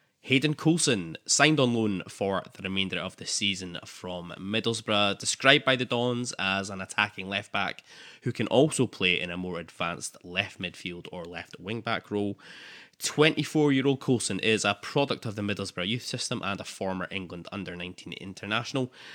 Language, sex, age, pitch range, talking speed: English, male, 10-29, 95-125 Hz, 160 wpm